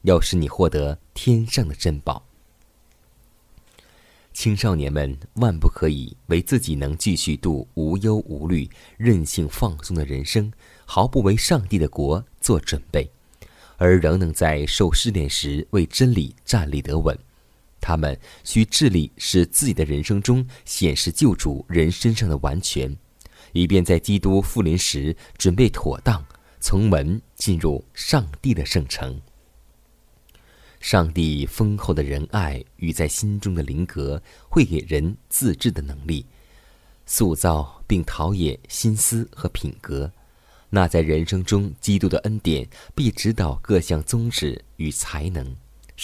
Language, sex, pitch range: Chinese, male, 75-100 Hz